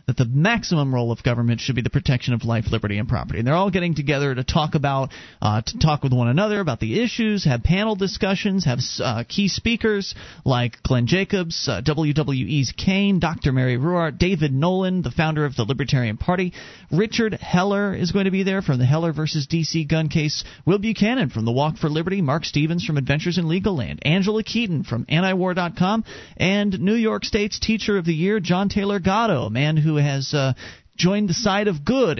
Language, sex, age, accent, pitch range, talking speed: English, male, 40-59, American, 135-190 Hz, 205 wpm